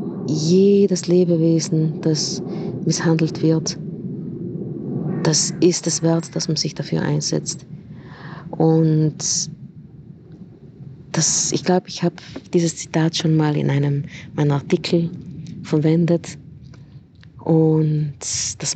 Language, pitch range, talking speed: German, 155-175 Hz, 100 wpm